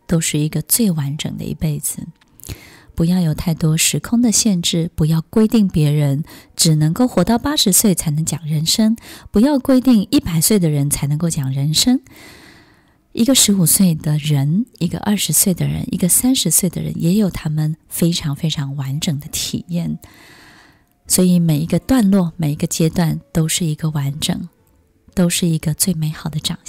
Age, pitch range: 20-39, 155-200 Hz